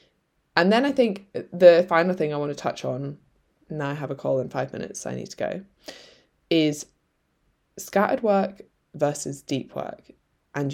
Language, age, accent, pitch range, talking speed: English, 20-39, British, 150-195 Hz, 180 wpm